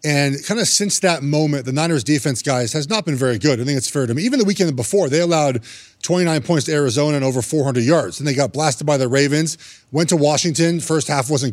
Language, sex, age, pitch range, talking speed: English, male, 30-49, 135-170 Hz, 250 wpm